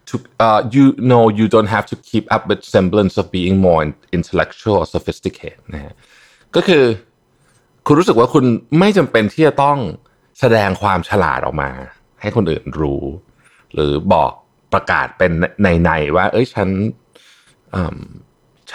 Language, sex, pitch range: Thai, male, 90-120 Hz